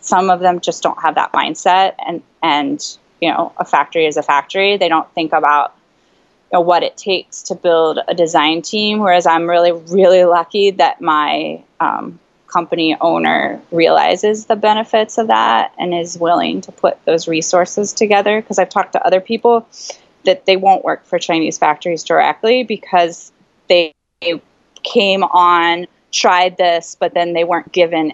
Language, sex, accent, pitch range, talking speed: English, female, American, 165-190 Hz, 170 wpm